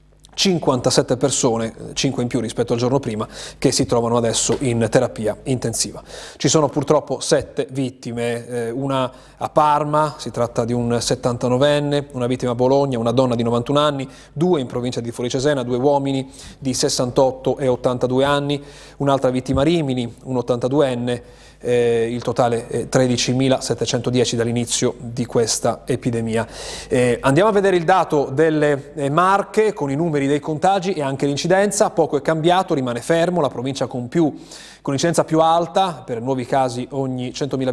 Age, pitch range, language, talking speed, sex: 30-49, 125-150 Hz, Italian, 155 wpm, male